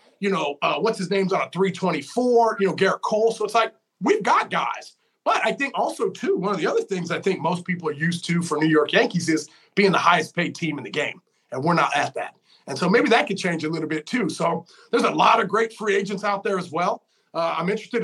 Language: English